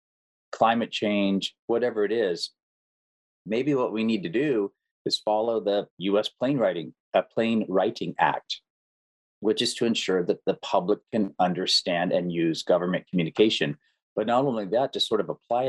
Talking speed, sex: 165 wpm, male